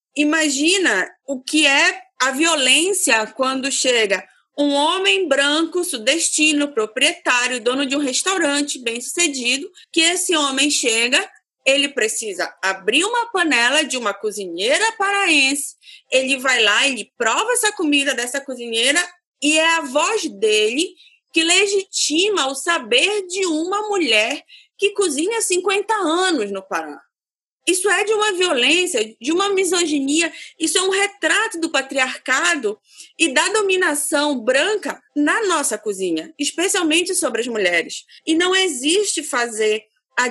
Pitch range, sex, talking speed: 260-355 Hz, female, 130 wpm